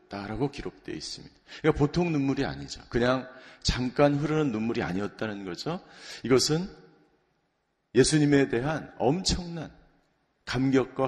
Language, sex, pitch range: Korean, male, 135-160 Hz